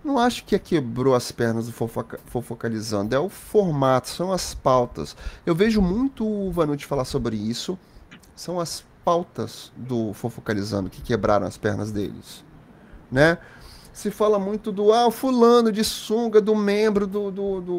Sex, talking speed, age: male, 165 wpm, 30-49